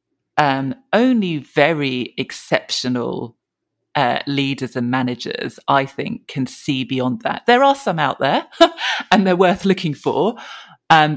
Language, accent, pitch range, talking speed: English, British, 135-180 Hz, 135 wpm